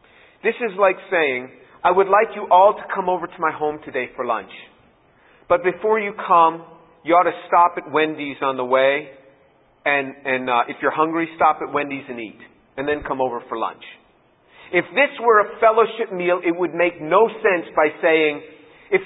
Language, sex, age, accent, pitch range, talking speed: English, male, 40-59, American, 155-200 Hz, 195 wpm